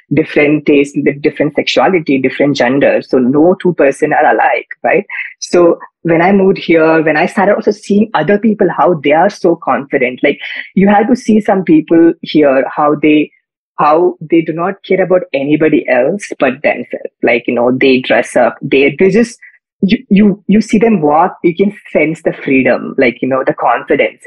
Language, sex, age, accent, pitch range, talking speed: Hindi, female, 20-39, native, 140-190 Hz, 185 wpm